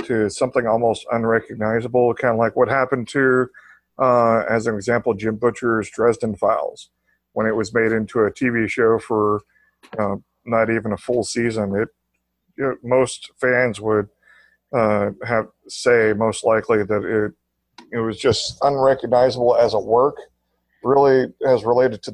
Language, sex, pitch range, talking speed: English, male, 110-130 Hz, 150 wpm